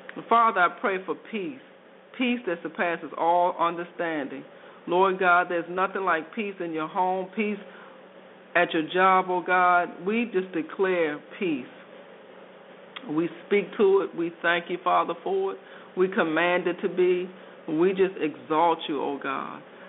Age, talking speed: 50-69, 150 wpm